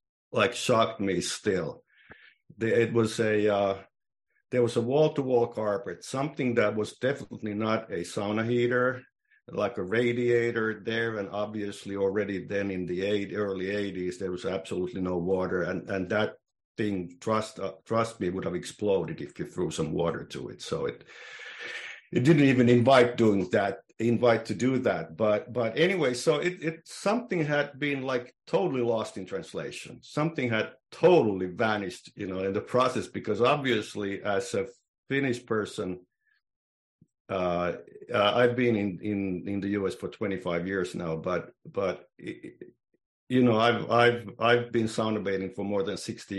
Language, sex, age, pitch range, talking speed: English, male, 50-69, 100-125 Hz, 160 wpm